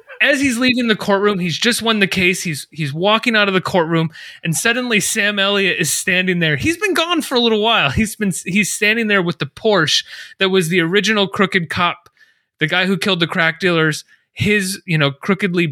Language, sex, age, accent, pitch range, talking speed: English, male, 30-49, American, 160-215 Hz, 215 wpm